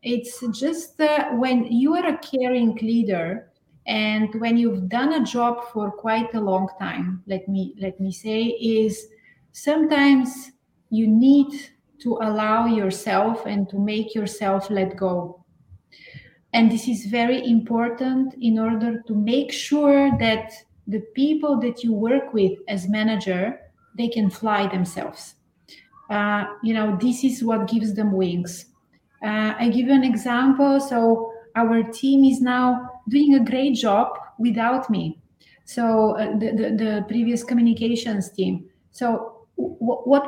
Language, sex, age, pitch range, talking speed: English, female, 30-49, 210-255 Hz, 145 wpm